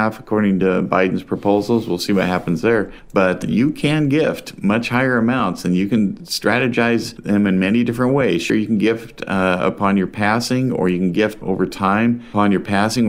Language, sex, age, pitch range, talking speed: English, male, 40-59, 90-110 Hz, 195 wpm